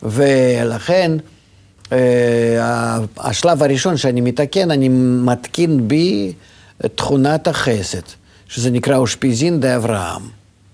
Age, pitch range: 50-69, 105-150 Hz